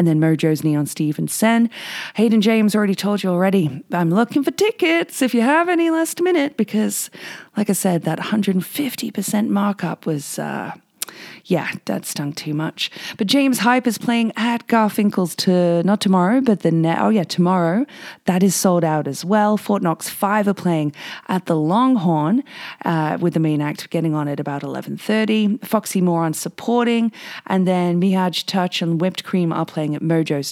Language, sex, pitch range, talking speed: English, female, 160-220 Hz, 180 wpm